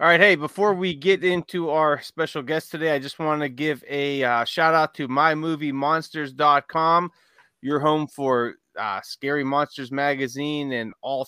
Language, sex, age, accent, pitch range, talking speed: English, male, 30-49, American, 135-155 Hz, 165 wpm